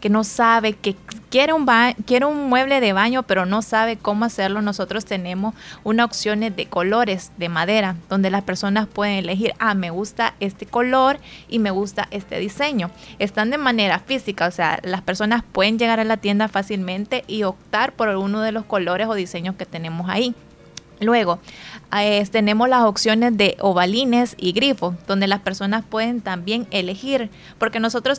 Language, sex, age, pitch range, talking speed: Spanish, female, 20-39, 185-225 Hz, 175 wpm